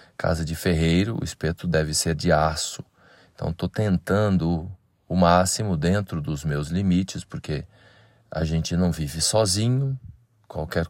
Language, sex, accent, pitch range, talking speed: Portuguese, male, Brazilian, 80-105 Hz, 140 wpm